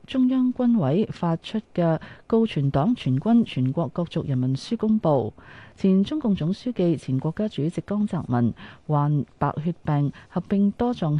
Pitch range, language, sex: 135-200 Hz, Chinese, female